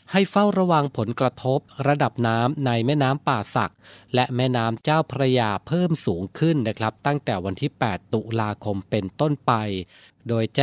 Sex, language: male, Thai